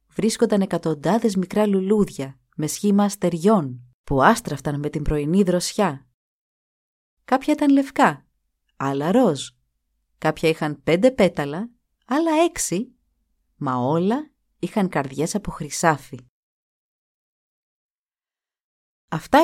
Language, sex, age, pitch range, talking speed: Greek, female, 30-49, 155-205 Hz, 95 wpm